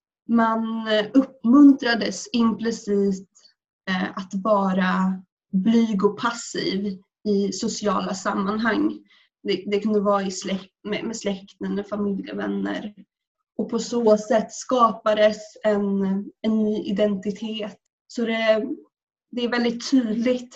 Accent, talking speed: native, 100 wpm